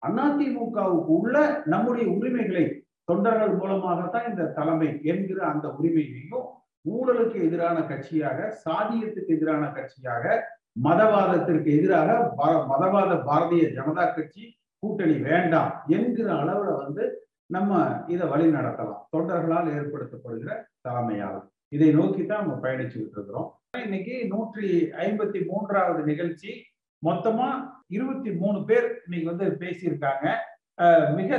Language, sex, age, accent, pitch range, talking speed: Tamil, male, 50-69, native, 165-220 Hz, 100 wpm